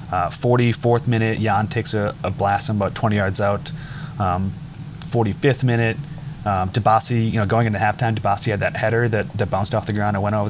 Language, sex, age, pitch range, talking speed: English, male, 20-39, 105-140 Hz, 200 wpm